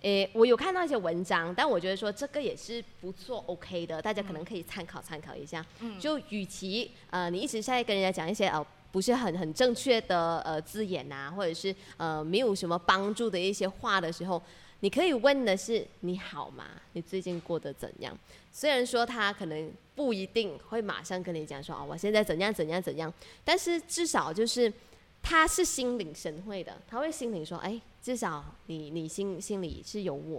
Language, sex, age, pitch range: Chinese, female, 20-39, 165-225 Hz